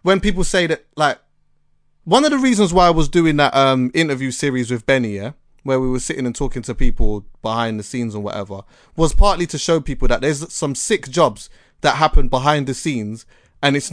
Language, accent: English, British